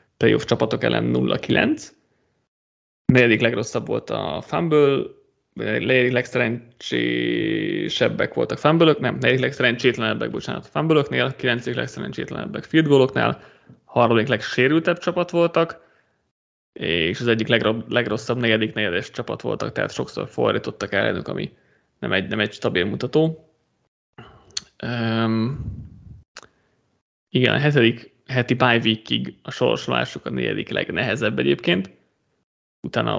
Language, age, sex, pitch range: Hungarian, 20-39, male, 110-130 Hz